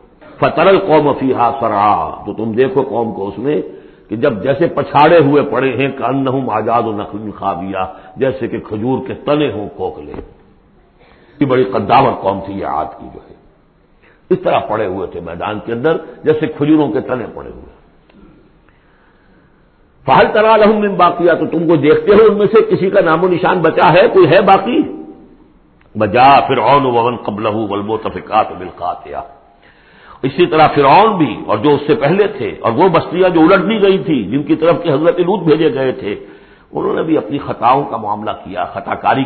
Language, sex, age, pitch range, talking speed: English, male, 60-79, 115-185 Hz, 110 wpm